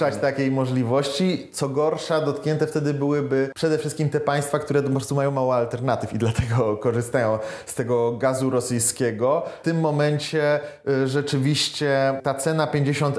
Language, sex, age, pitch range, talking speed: Polish, male, 30-49, 125-150 Hz, 140 wpm